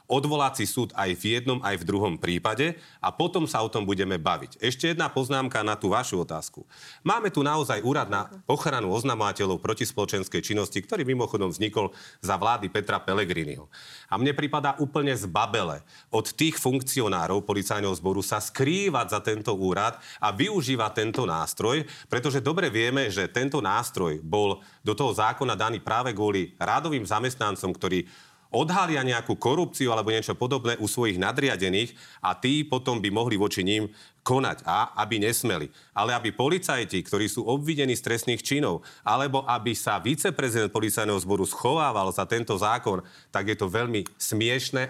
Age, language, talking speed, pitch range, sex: 40-59, Slovak, 160 wpm, 105-140 Hz, male